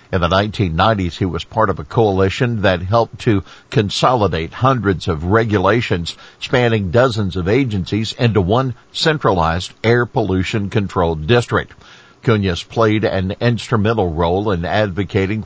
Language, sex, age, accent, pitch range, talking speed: English, male, 50-69, American, 95-120 Hz, 130 wpm